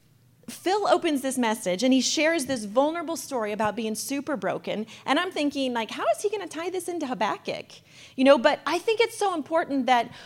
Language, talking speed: English, 210 wpm